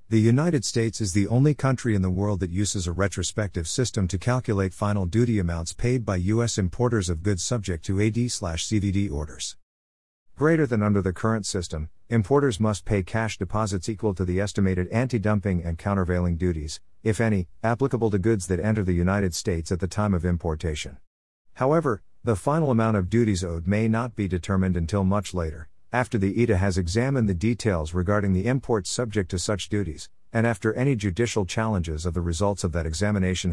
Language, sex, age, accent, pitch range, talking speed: English, male, 50-69, American, 90-115 Hz, 185 wpm